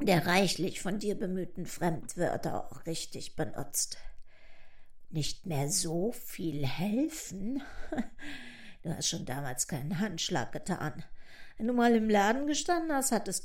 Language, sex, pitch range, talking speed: German, female, 160-240 Hz, 130 wpm